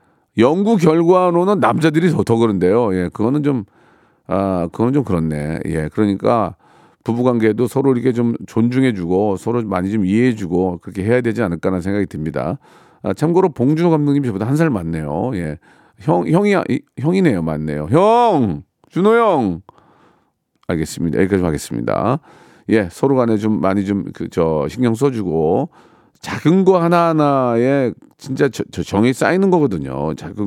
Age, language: 40-59, Korean